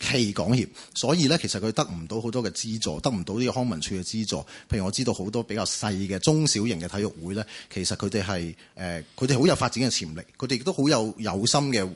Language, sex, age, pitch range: Chinese, male, 30-49, 105-145 Hz